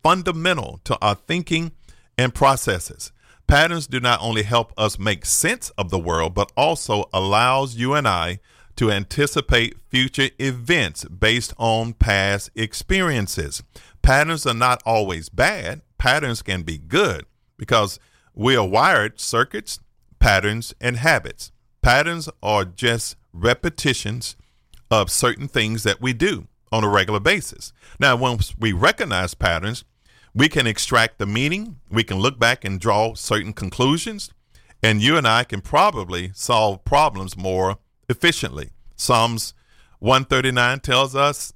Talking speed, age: 135 wpm, 40-59